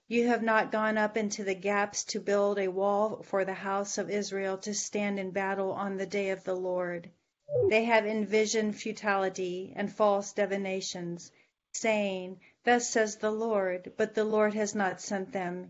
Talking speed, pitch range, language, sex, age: 175 wpm, 195-220 Hz, English, female, 40-59